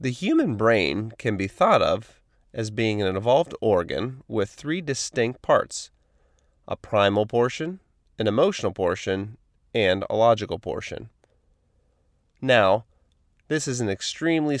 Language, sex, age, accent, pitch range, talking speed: English, male, 30-49, American, 95-120 Hz, 125 wpm